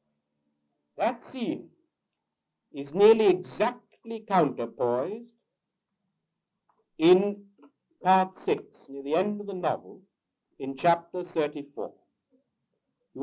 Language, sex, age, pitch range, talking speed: English, male, 60-79, 145-205 Hz, 85 wpm